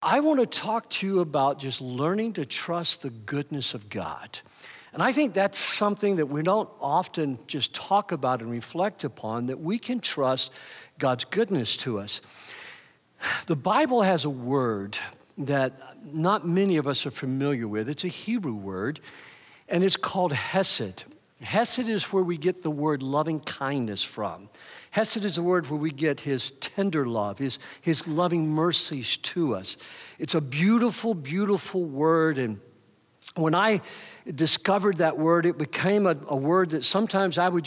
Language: English